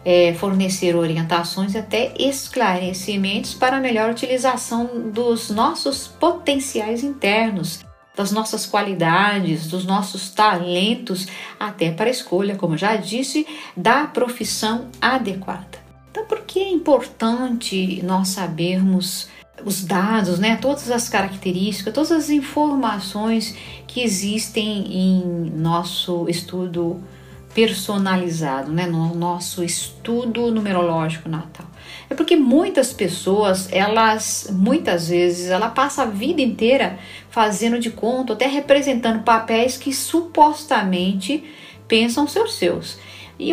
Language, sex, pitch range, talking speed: Portuguese, female, 185-245 Hz, 115 wpm